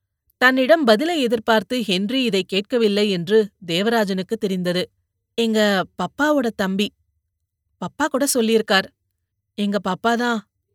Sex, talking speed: female, 95 wpm